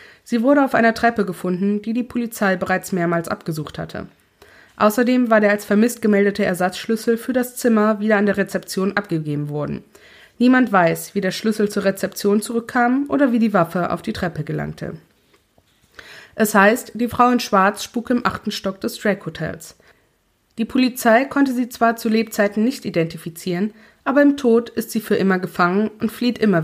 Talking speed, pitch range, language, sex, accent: 175 wpm, 180-235 Hz, German, female, German